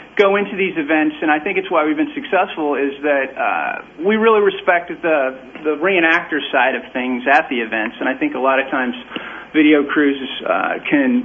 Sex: male